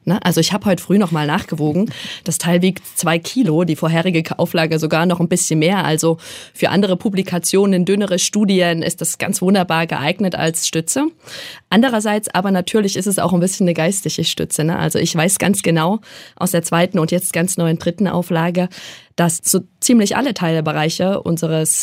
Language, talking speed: German, 175 wpm